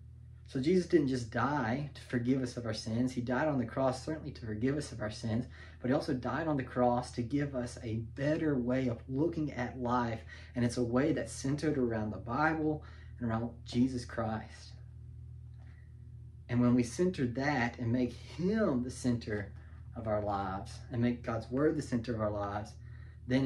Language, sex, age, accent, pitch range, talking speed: English, male, 30-49, American, 110-130 Hz, 195 wpm